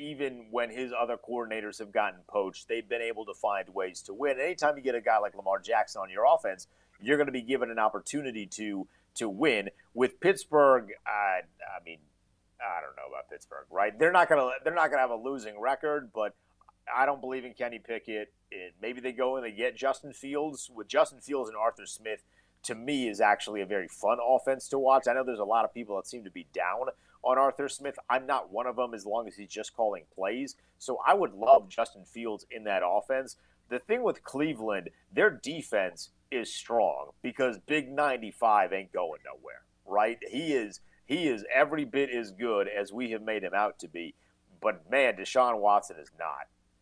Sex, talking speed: male, 210 wpm